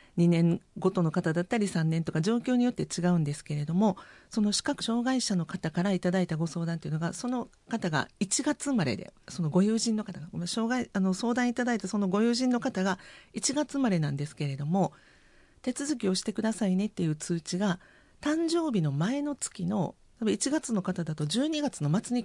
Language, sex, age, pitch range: Japanese, female, 40-59, 175-245 Hz